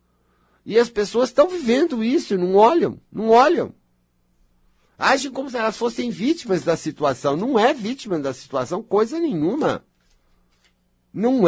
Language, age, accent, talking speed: Portuguese, 60-79, Brazilian, 135 wpm